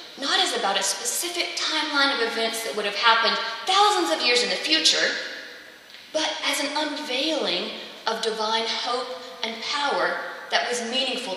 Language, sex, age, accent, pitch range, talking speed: English, female, 30-49, American, 210-300 Hz, 160 wpm